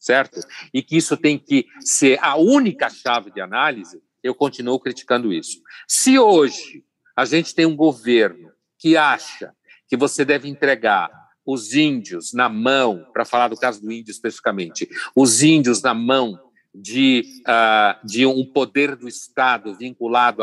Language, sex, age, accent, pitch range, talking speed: Portuguese, male, 60-79, Brazilian, 125-215 Hz, 145 wpm